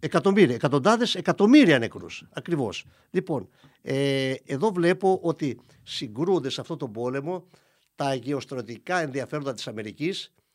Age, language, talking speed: 50-69, Greek, 115 wpm